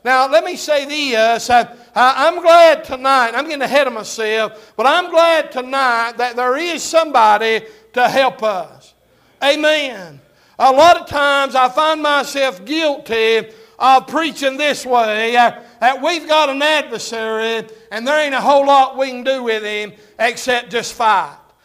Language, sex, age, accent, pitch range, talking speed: English, male, 60-79, American, 235-285 Hz, 155 wpm